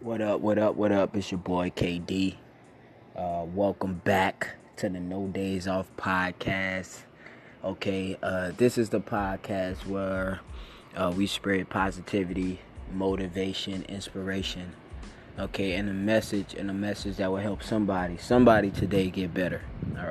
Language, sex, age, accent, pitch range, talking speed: English, male, 20-39, American, 95-105 Hz, 145 wpm